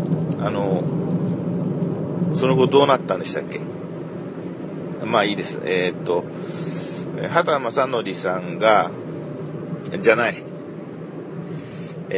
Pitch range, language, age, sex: 125-170 Hz, Japanese, 40-59, male